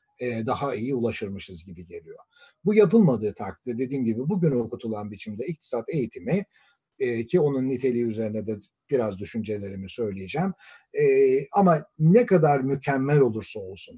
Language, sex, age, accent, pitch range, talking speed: Turkish, male, 60-79, native, 115-170 Hz, 135 wpm